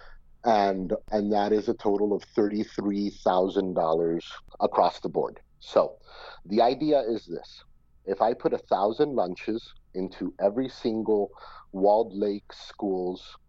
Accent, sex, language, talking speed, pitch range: American, male, English, 140 wpm, 90-105 Hz